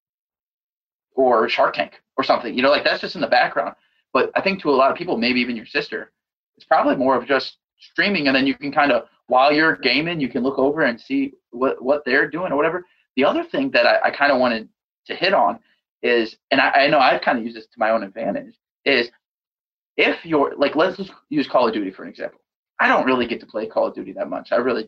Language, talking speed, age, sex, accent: English, 245 wpm, 20-39, male, American